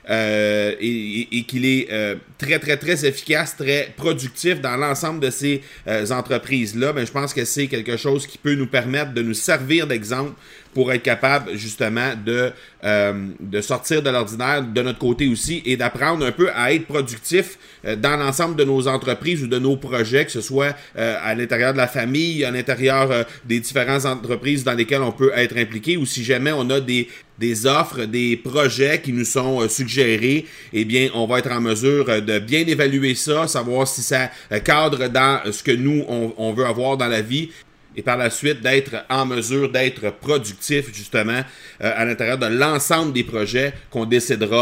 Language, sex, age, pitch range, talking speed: French, male, 30-49, 115-140 Hz, 190 wpm